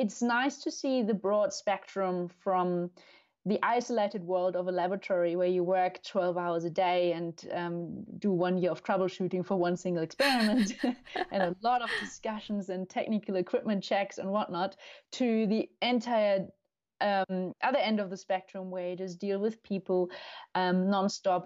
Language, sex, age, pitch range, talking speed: English, female, 30-49, 180-215 Hz, 170 wpm